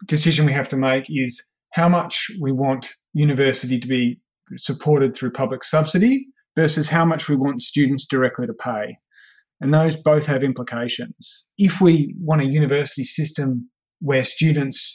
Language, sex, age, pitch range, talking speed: English, male, 30-49, 130-155 Hz, 155 wpm